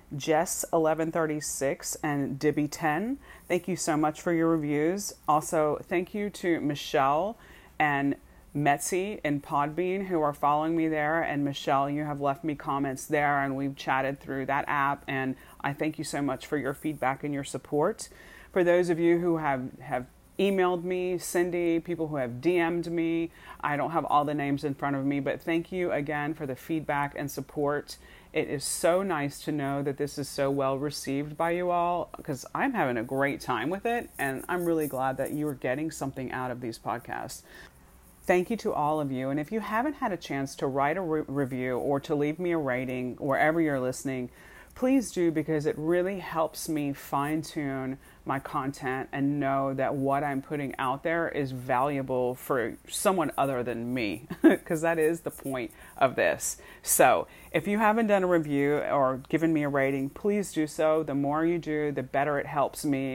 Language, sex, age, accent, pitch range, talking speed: English, female, 30-49, American, 140-165 Hz, 190 wpm